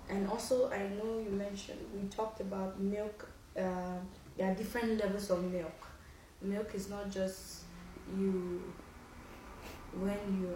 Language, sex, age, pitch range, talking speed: English, female, 20-39, 180-200 Hz, 135 wpm